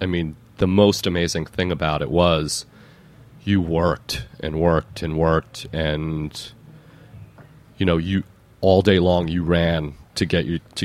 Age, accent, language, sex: 30-49, American, English, male